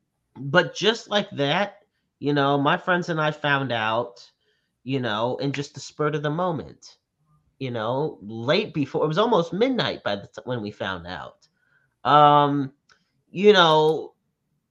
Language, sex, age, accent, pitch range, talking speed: English, male, 30-49, American, 140-215 Hz, 160 wpm